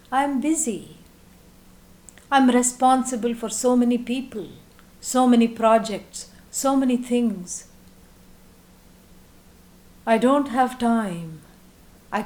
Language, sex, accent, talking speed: English, female, Indian, 95 wpm